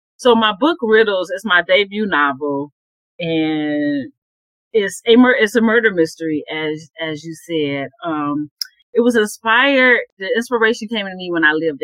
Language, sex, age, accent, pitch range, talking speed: English, female, 40-59, American, 145-210 Hz, 160 wpm